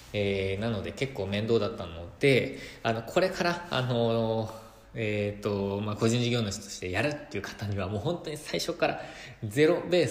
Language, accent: Japanese, native